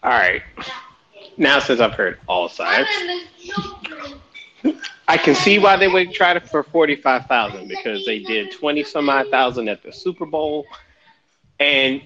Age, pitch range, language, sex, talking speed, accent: 30-49, 120-175 Hz, English, male, 150 wpm, American